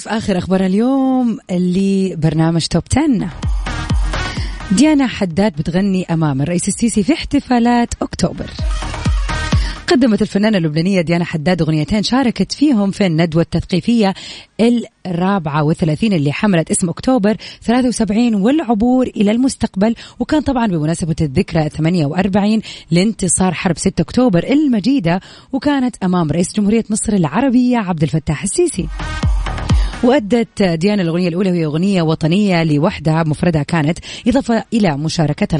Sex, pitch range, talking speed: female, 165-225 Hz, 120 wpm